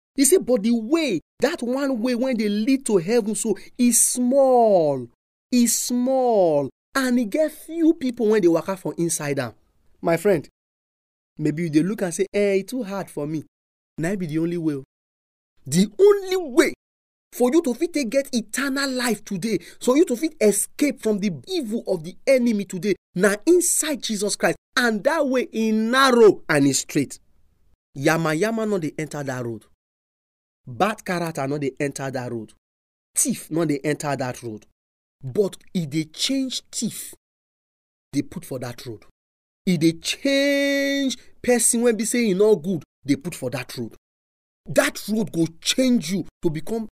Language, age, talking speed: English, 30-49, 170 wpm